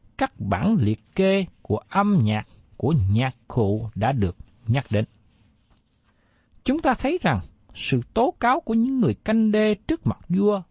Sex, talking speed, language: male, 165 wpm, Vietnamese